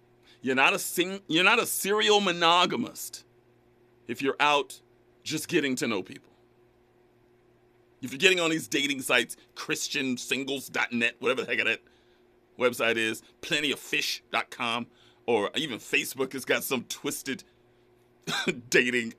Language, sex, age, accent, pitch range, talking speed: English, male, 40-59, American, 120-155 Hz, 130 wpm